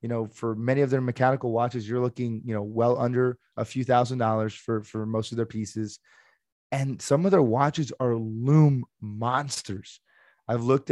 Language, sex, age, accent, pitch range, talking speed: English, male, 20-39, American, 115-140 Hz, 185 wpm